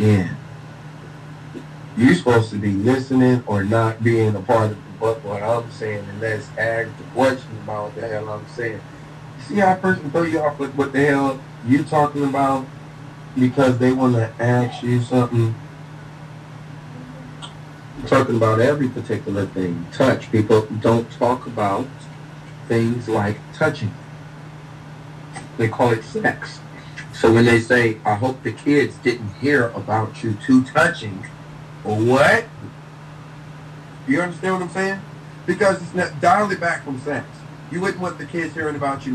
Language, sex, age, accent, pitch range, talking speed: English, male, 30-49, American, 115-150 Hz, 160 wpm